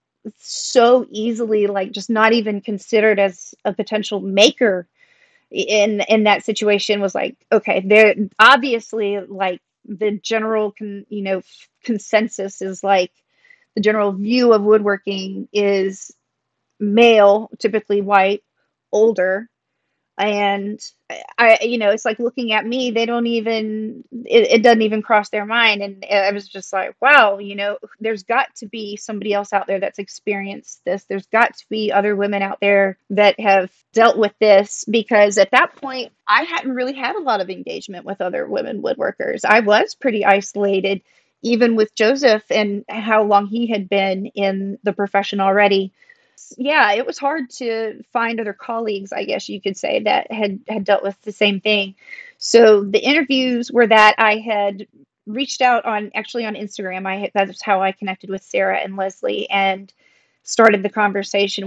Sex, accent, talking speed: female, American, 165 wpm